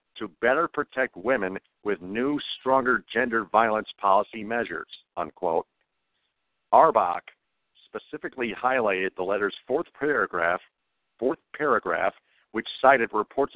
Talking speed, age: 105 wpm, 50-69